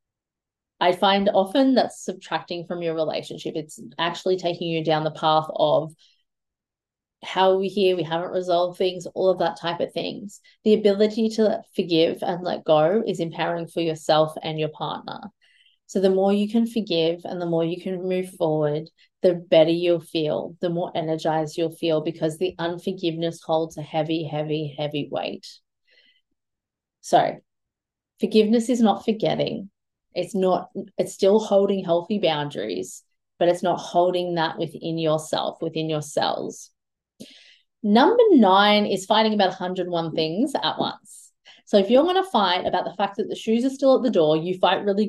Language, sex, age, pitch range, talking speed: English, female, 20-39, 165-210 Hz, 170 wpm